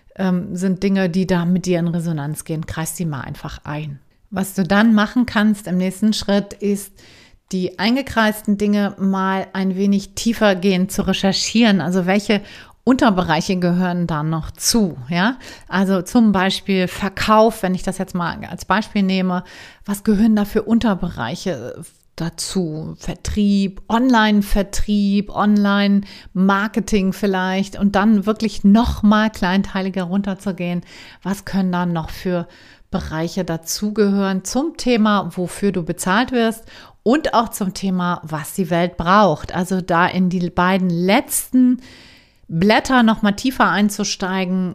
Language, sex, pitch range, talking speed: German, female, 180-210 Hz, 135 wpm